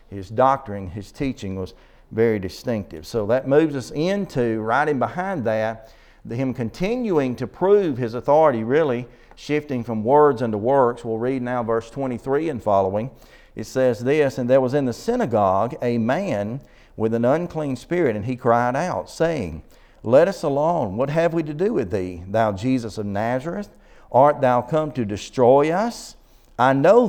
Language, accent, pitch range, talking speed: English, American, 115-160 Hz, 170 wpm